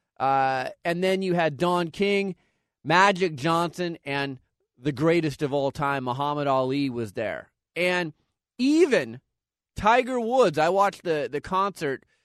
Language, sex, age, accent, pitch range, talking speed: English, male, 30-49, American, 150-190 Hz, 135 wpm